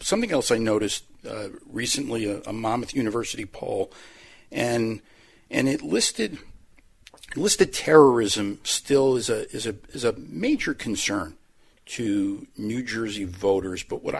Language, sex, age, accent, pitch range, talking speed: English, male, 50-69, American, 100-140 Hz, 135 wpm